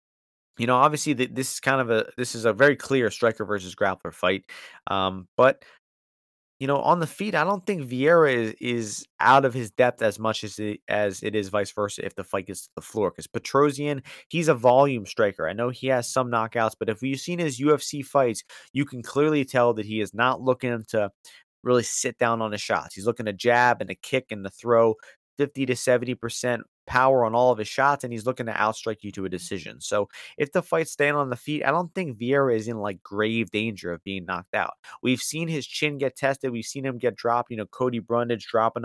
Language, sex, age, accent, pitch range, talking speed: English, male, 30-49, American, 110-140 Hz, 235 wpm